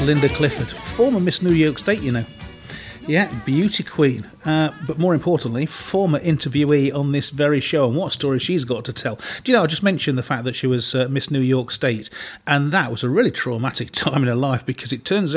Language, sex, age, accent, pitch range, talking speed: English, male, 40-59, British, 125-155 Hz, 225 wpm